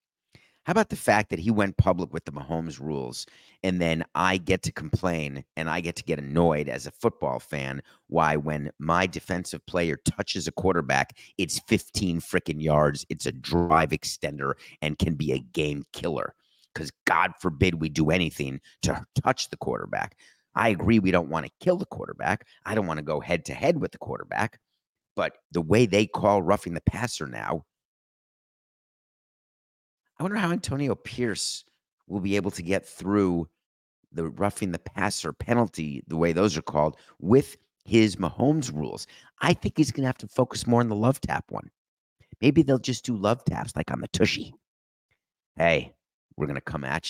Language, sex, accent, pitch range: English, male, American, 80-105 Hz